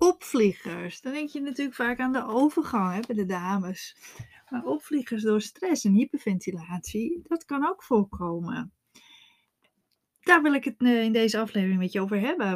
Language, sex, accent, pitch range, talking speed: Dutch, female, Dutch, 185-230 Hz, 160 wpm